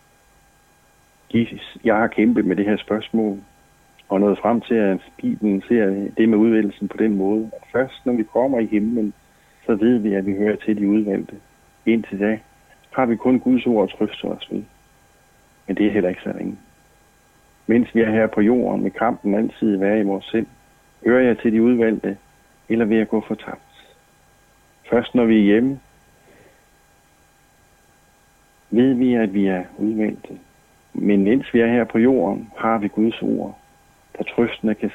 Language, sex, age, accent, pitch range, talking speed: Danish, male, 60-79, native, 100-115 Hz, 175 wpm